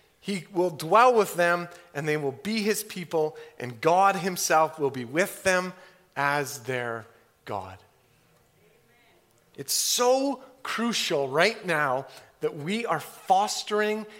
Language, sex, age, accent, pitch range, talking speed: English, male, 30-49, American, 150-215 Hz, 125 wpm